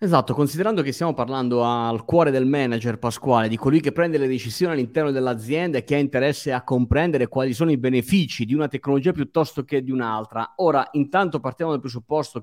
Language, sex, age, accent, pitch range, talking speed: Italian, male, 30-49, native, 120-150 Hz, 195 wpm